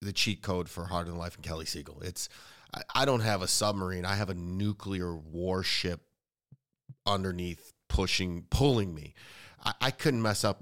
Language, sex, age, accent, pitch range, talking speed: English, male, 30-49, American, 90-115 Hz, 175 wpm